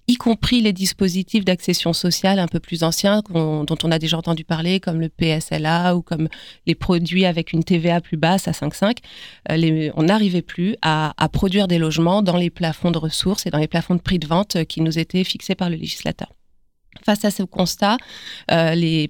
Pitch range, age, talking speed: 165-200 Hz, 30-49, 210 wpm